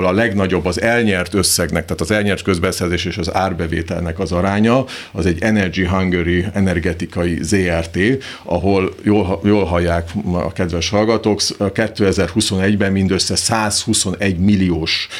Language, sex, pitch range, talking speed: Hungarian, male, 85-105 Hz, 120 wpm